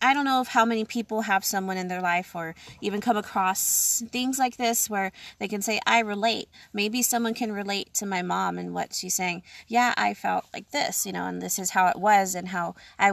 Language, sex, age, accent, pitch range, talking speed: English, female, 20-39, American, 180-230 Hz, 240 wpm